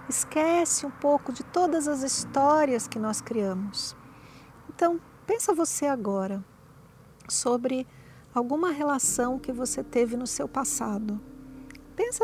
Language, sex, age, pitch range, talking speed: Portuguese, female, 50-69, 230-285 Hz, 120 wpm